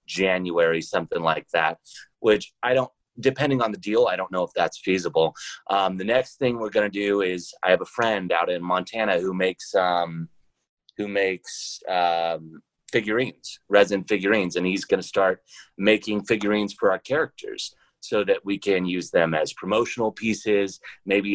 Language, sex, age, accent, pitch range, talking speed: English, male, 30-49, American, 90-105 Hz, 175 wpm